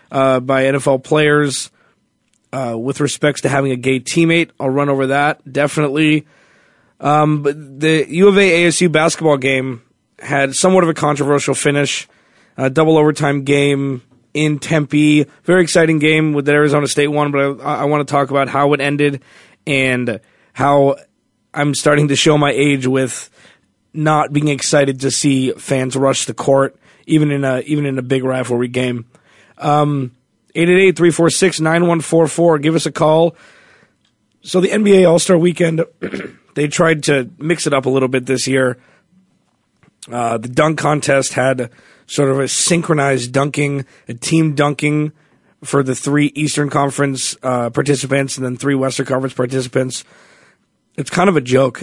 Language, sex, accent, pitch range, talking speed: English, male, American, 135-155 Hz, 165 wpm